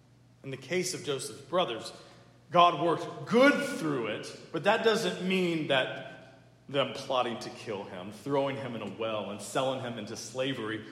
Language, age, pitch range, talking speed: English, 40-59, 115-140 Hz, 170 wpm